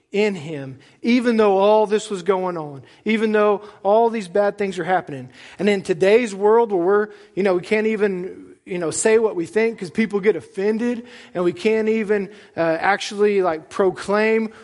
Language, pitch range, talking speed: English, 175-220 Hz, 190 wpm